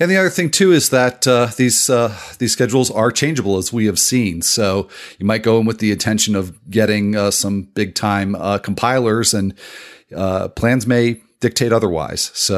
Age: 40-59